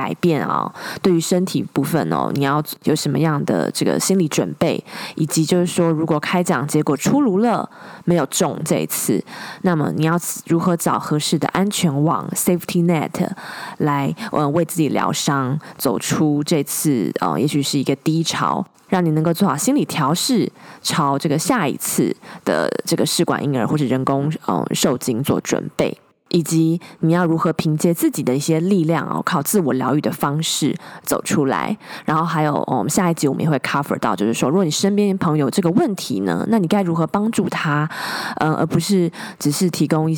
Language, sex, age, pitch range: Chinese, female, 20-39, 150-180 Hz